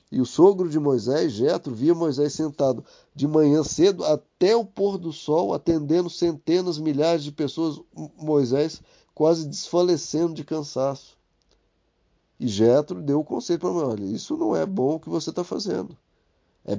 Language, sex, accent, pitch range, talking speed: Portuguese, male, Brazilian, 120-165 Hz, 155 wpm